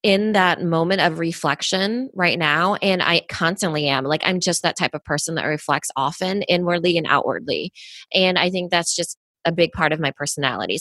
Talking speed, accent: 195 wpm, American